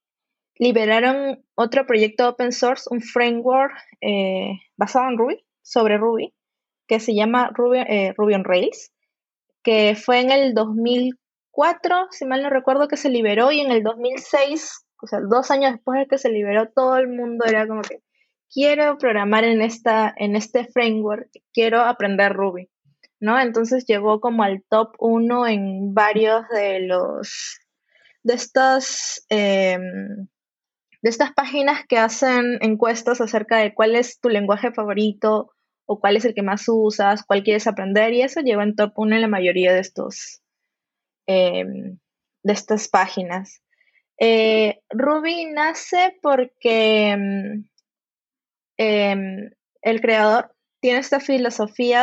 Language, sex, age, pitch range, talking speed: Spanish, female, 20-39, 210-255 Hz, 140 wpm